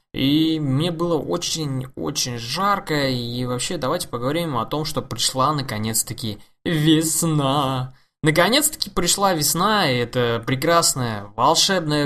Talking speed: 110 wpm